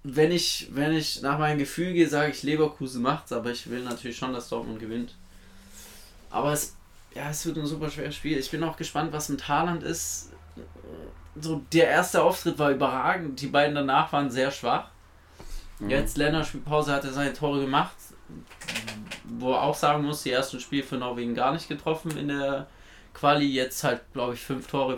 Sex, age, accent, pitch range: male, 20-39, German, 115-150 Hz